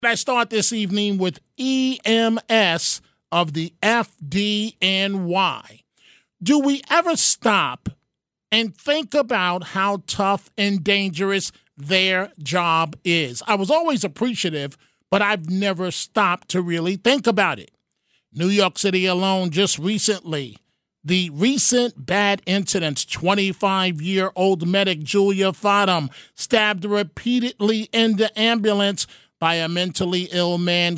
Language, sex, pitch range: English, male, 180-220 Hz